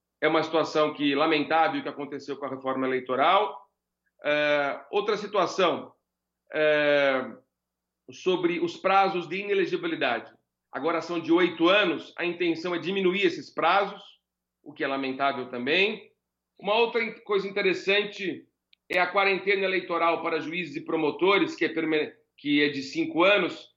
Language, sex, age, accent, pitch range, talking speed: Portuguese, male, 40-59, Brazilian, 155-210 Hz, 135 wpm